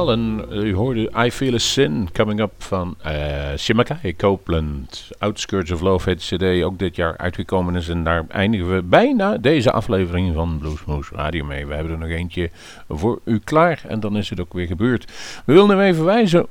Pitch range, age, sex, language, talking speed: 85-115 Hz, 40-59, male, Dutch, 195 wpm